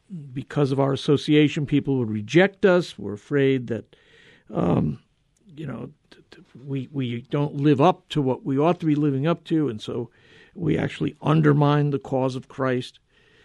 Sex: male